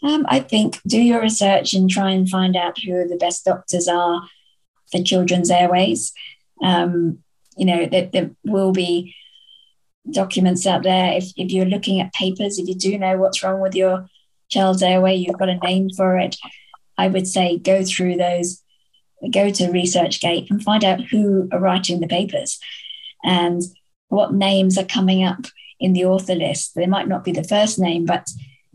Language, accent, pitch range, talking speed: English, British, 180-195 Hz, 180 wpm